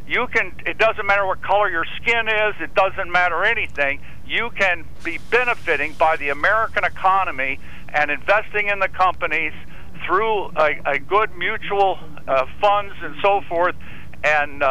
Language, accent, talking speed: English, American, 155 wpm